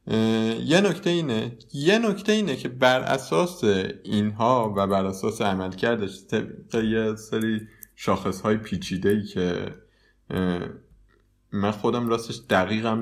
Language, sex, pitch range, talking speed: Persian, male, 95-120 Hz, 120 wpm